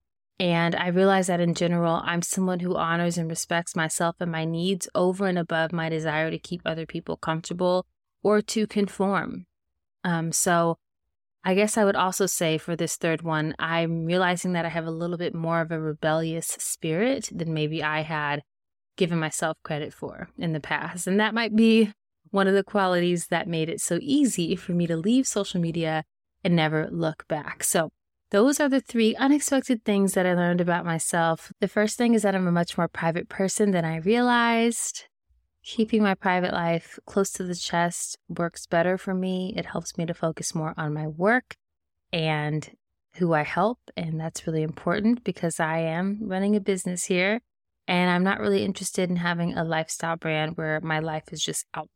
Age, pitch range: 20-39, 160-195 Hz